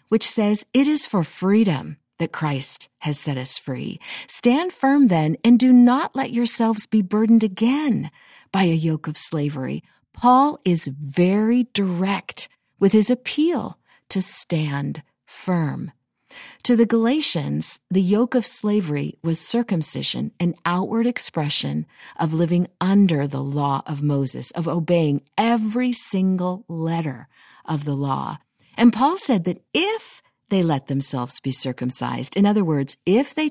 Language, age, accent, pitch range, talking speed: English, 50-69, American, 160-245 Hz, 145 wpm